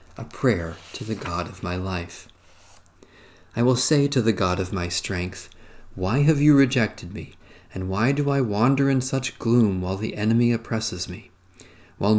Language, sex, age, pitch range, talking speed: English, male, 40-59, 95-125 Hz, 175 wpm